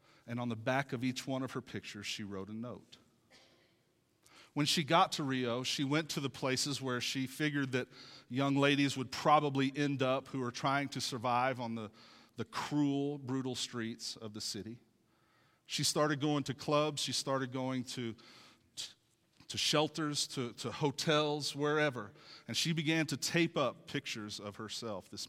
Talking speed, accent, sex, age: 175 wpm, American, male, 40-59